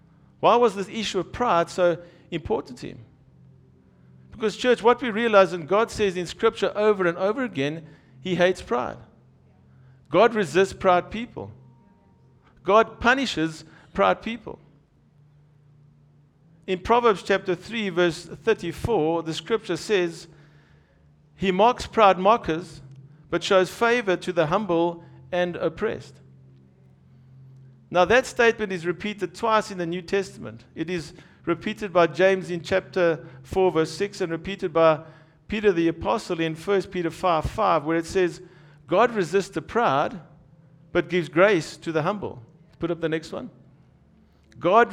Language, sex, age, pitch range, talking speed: English, male, 50-69, 155-195 Hz, 140 wpm